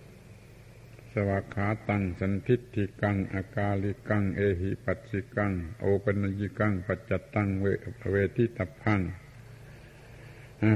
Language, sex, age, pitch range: Thai, male, 70-89, 100-120 Hz